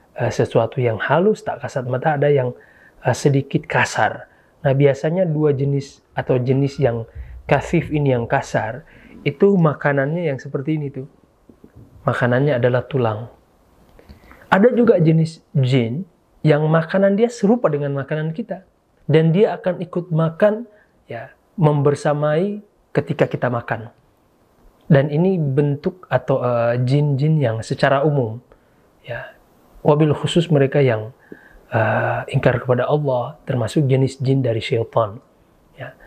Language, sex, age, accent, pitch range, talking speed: Indonesian, male, 30-49, native, 125-160 Hz, 125 wpm